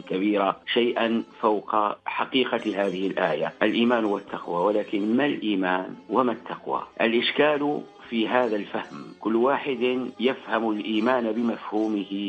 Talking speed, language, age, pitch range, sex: 105 wpm, Arabic, 50-69, 100-120 Hz, male